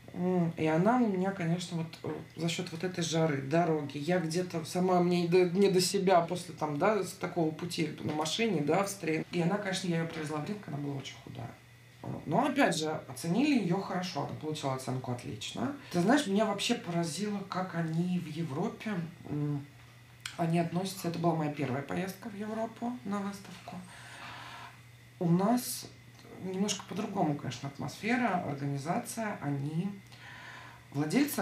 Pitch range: 150-190 Hz